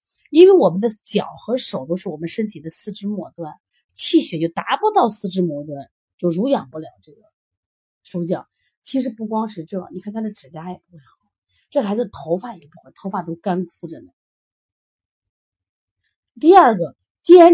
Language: Chinese